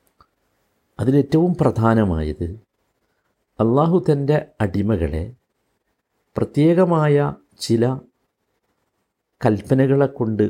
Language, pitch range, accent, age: Malayalam, 105-145 Hz, native, 60-79